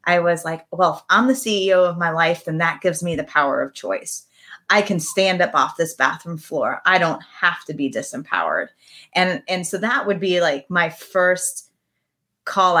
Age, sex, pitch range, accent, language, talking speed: 30-49, female, 165-205 Hz, American, English, 200 wpm